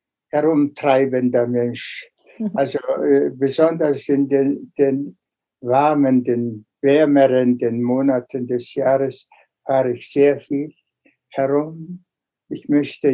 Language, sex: German, male